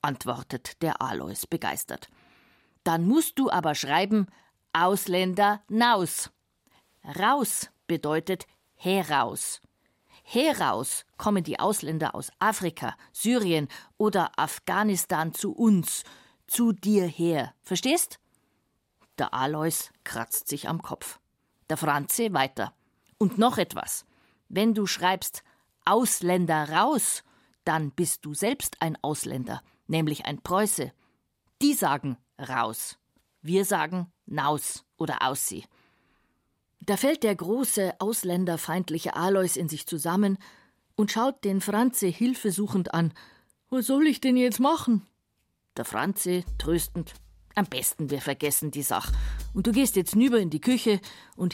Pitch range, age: 155-215 Hz, 50-69